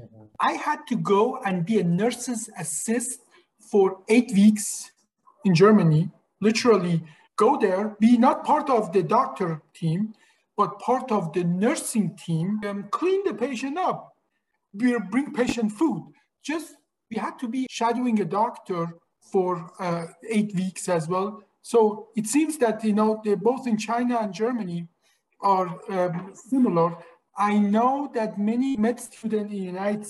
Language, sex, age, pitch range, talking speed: English, male, 50-69, 190-240 Hz, 150 wpm